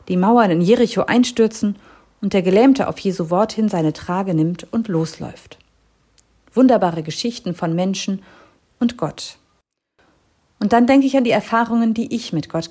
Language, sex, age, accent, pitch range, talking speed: German, female, 50-69, German, 175-235 Hz, 160 wpm